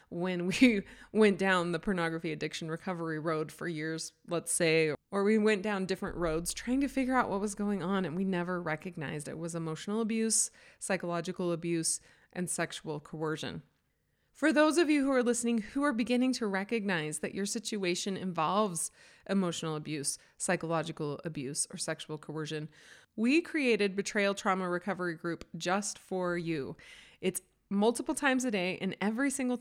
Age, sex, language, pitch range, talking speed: 20-39, female, English, 170-220 Hz, 165 wpm